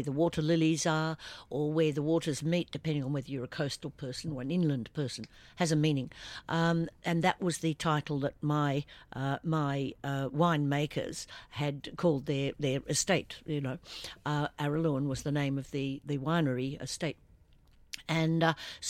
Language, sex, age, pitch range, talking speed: English, female, 60-79, 140-170 Hz, 170 wpm